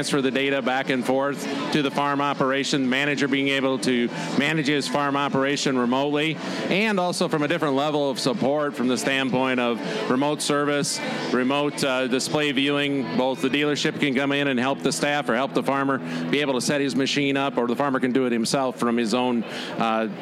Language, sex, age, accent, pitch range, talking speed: English, male, 40-59, American, 130-150 Hz, 210 wpm